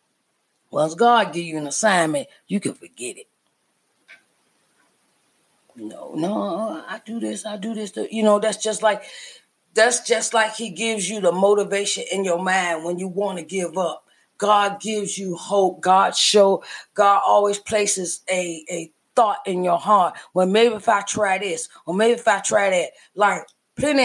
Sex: female